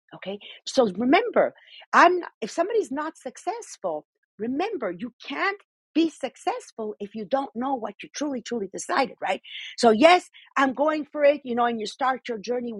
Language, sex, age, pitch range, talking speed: English, female, 40-59, 215-320 Hz, 170 wpm